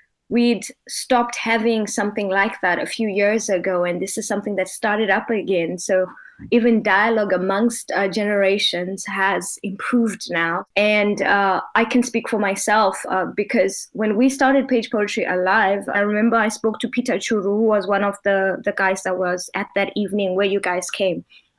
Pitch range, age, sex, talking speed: 200-240 Hz, 20-39, female, 180 wpm